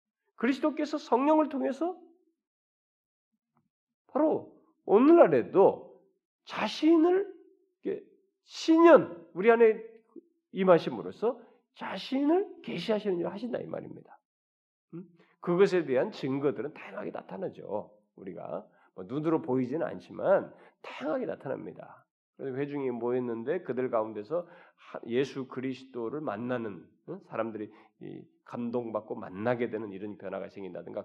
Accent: native